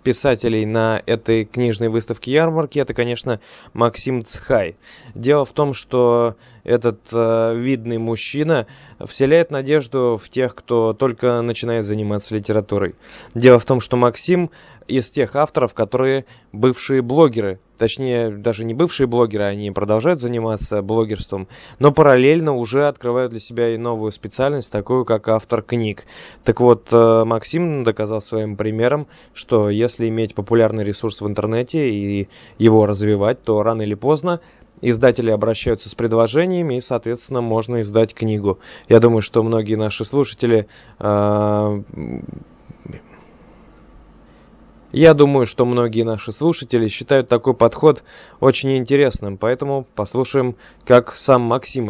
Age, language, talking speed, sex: 20-39, Russian, 140 wpm, male